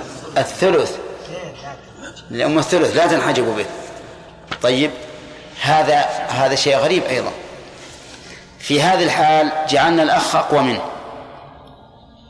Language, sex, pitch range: Arabic, male, 135-155 Hz